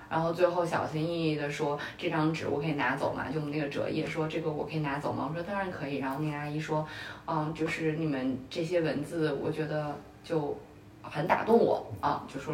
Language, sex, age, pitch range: Chinese, female, 20-39, 155-195 Hz